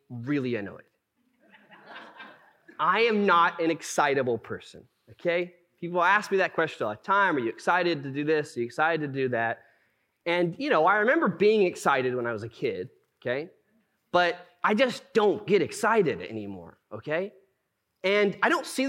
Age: 30-49